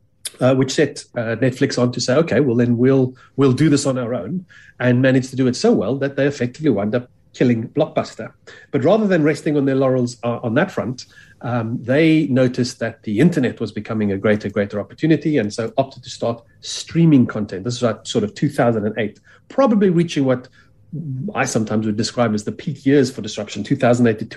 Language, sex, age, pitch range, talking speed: English, male, 40-59, 115-140 Hz, 200 wpm